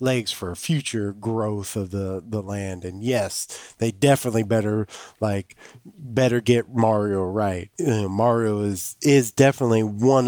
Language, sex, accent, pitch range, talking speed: English, male, American, 95-120 Hz, 140 wpm